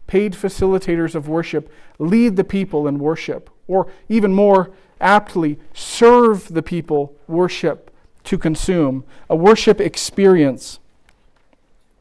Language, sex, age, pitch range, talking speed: English, male, 40-59, 160-200 Hz, 110 wpm